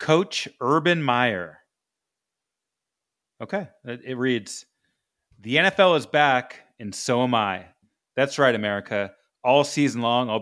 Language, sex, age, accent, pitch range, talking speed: English, male, 30-49, American, 115-145 Hz, 120 wpm